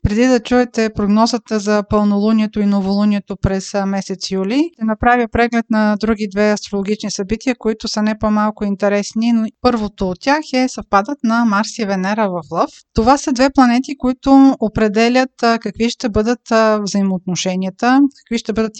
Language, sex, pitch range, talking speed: Bulgarian, female, 205-245 Hz, 155 wpm